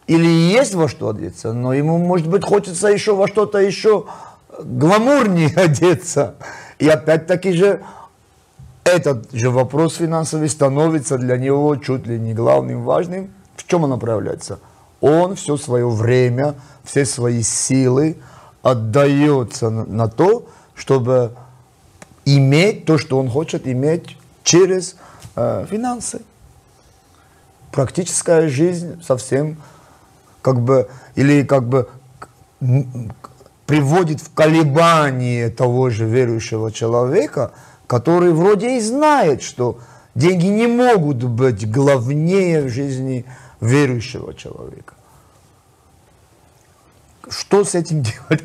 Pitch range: 130-170 Hz